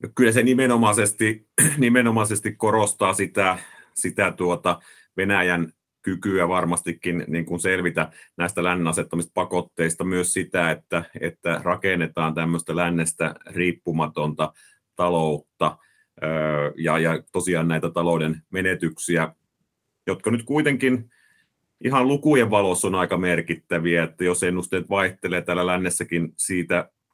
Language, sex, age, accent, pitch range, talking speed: Finnish, male, 30-49, native, 85-95 Hz, 105 wpm